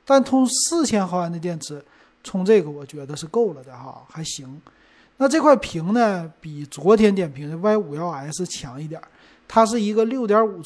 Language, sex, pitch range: Chinese, male, 160-215 Hz